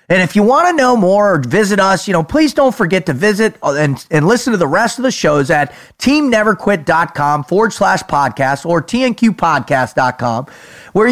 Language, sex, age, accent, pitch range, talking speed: English, male, 30-49, American, 165-225 Hz, 185 wpm